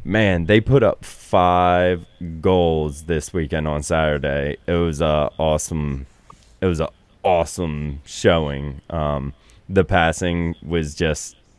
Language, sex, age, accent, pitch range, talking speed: English, male, 20-39, American, 80-95 Hz, 125 wpm